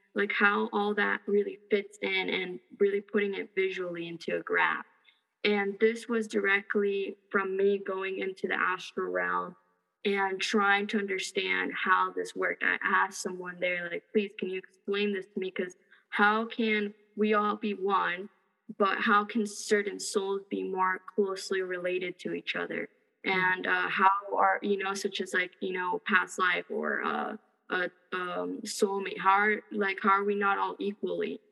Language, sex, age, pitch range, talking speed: English, female, 20-39, 190-210 Hz, 170 wpm